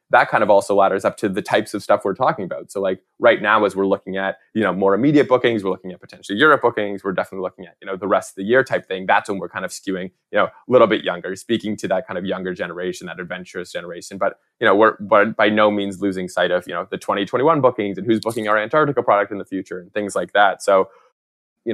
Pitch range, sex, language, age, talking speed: 95-110 Hz, male, English, 20-39, 275 wpm